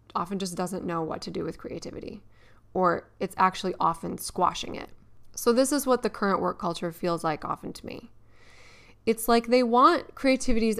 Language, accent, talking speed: English, American, 185 wpm